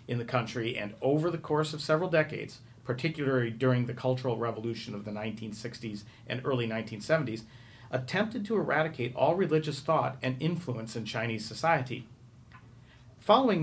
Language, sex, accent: English, male, American